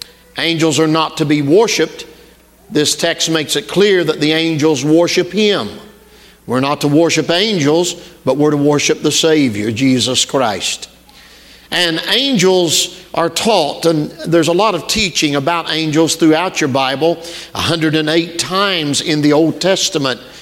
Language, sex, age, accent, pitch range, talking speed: English, male, 50-69, American, 155-190 Hz, 145 wpm